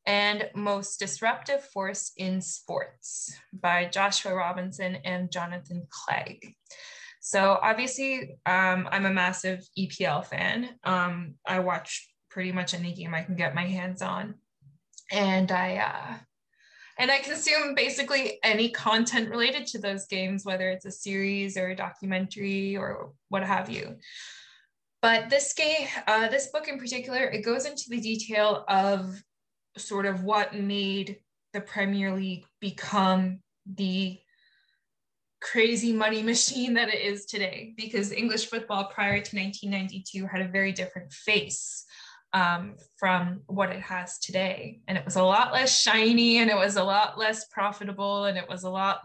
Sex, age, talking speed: female, 20-39, 150 wpm